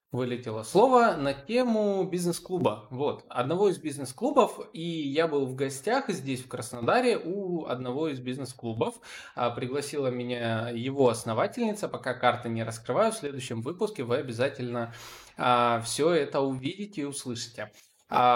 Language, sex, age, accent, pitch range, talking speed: Russian, male, 20-39, native, 120-175 Hz, 135 wpm